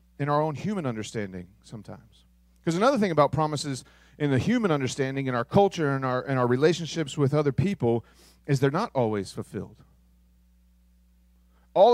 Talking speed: 160 wpm